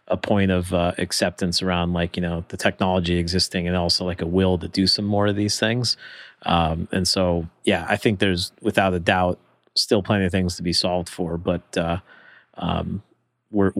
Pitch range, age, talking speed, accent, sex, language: 90-100 Hz, 30-49, 200 wpm, American, male, English